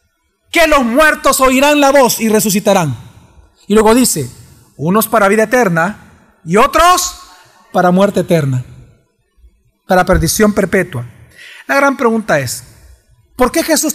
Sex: male